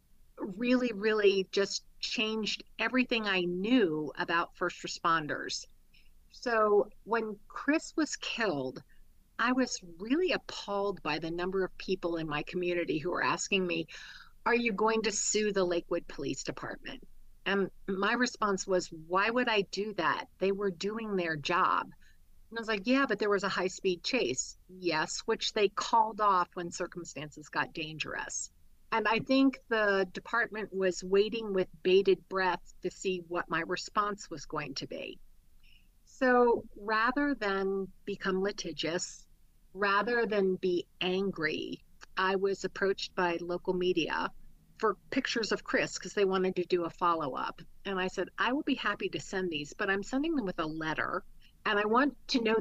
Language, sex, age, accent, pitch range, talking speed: English, female, 50-69, American, 180-220 Hz, 160 wpm